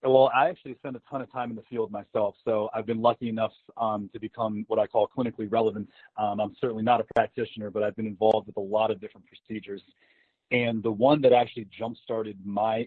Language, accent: English, American